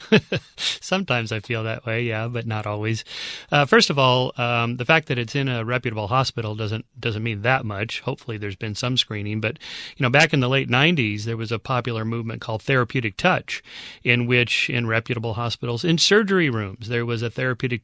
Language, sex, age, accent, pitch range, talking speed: English, male, 40-59, American, 115-130 Hz, 200 wpm